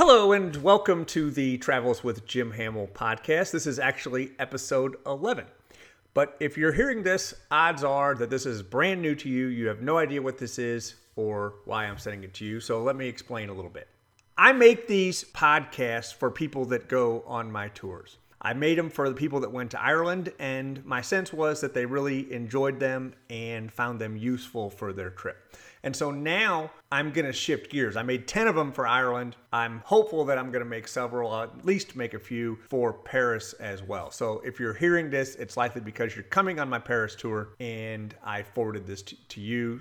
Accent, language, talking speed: American, English, 210 wpm